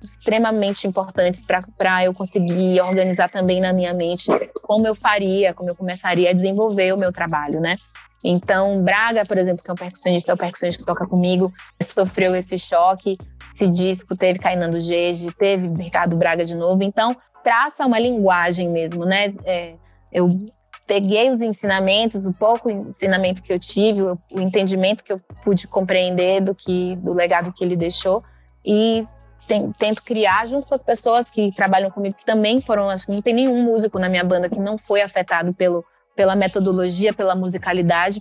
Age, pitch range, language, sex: 20-39, 180-210 Hz, Portuguese, female